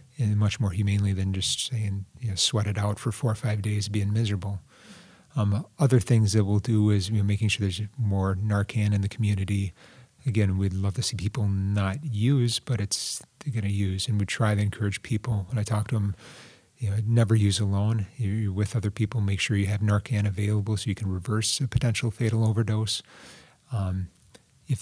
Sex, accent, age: male, American, 30-49